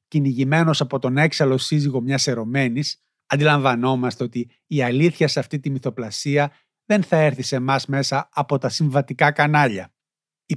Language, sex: Greek, male